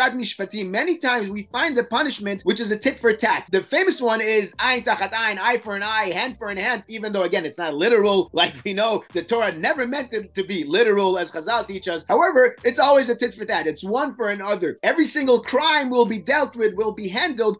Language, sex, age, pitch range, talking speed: English, male, 30-49, 200-260 Hz, 230 wpm